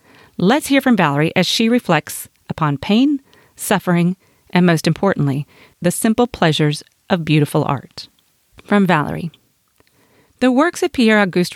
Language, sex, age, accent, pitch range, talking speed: English, female, 40-59, American, 165-220 Hz, 130 wpm